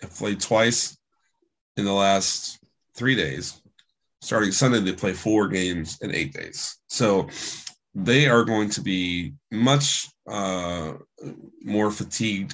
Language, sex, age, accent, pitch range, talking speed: English, male, 30-49, American, 95-120 Hz, 125 wpm